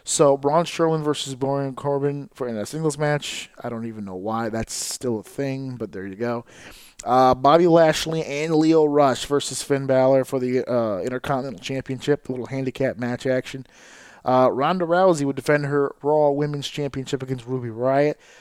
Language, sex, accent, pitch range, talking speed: English, male, American, 130-155 Hz, 180 wpm